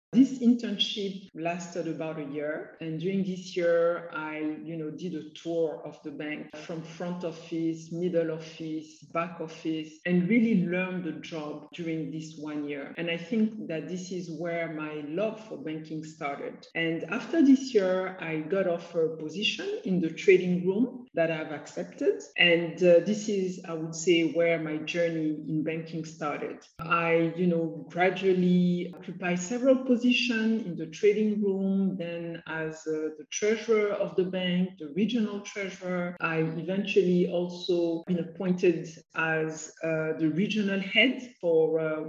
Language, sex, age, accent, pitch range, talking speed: English, female, 50-69, French, 160-190 Hz, 155 wpm